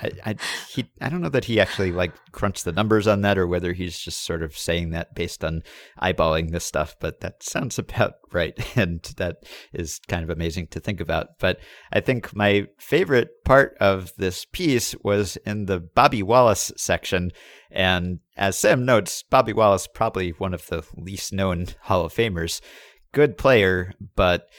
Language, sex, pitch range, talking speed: English, male, 85-105 Hz, 185 wpm